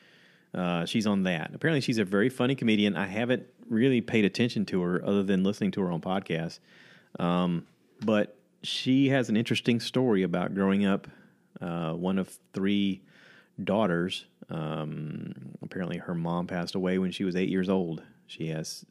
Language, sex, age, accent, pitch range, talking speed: English, male, 30-49, American, 85-105 Hz, 170 wpm